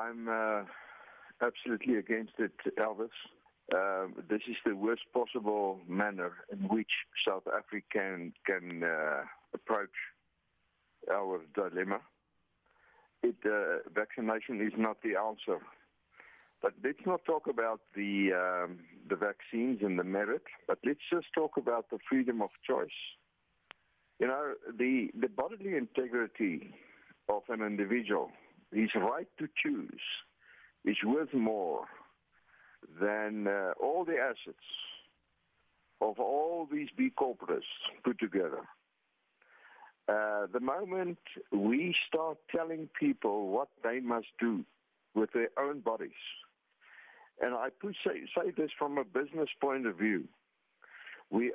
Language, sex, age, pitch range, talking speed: English, male, 60-79, 105-160 Hz, 125 wpm